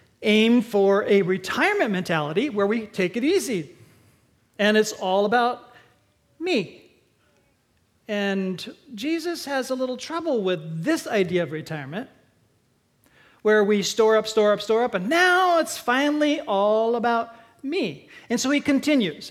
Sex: male